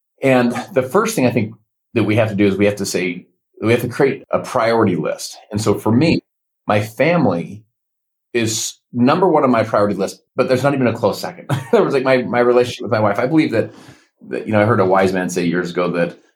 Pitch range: 90-120 Hz